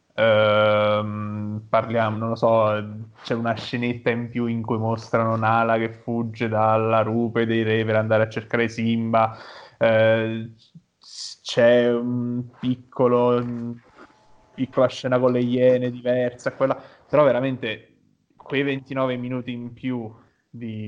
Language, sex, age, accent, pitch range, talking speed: Italian, male, 10-29, native, 110-120 Hz, 125 wpm